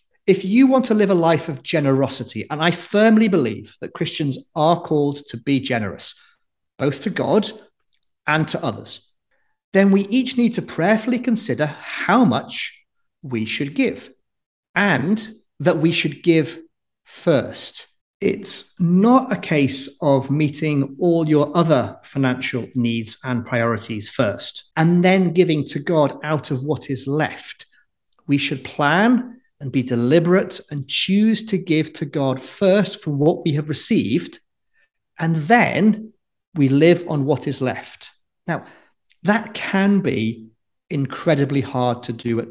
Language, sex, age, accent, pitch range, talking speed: English, male, 40-59, British, 135-195 Hz, 145 wpm